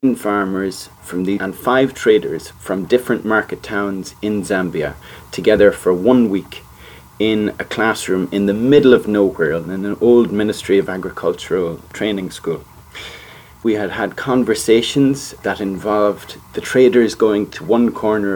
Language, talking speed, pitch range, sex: English, 145 wpm, 100-115 Hz, male